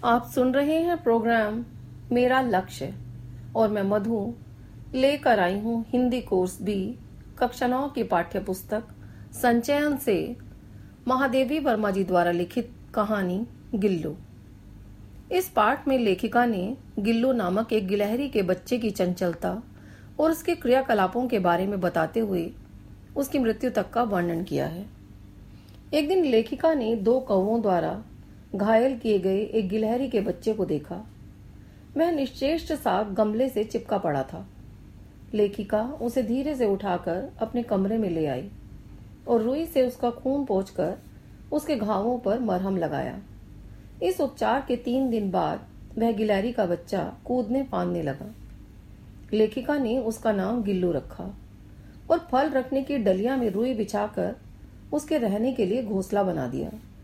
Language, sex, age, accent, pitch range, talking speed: Hindi, female, 40-59, native, 180-250 Hz, 145 wpm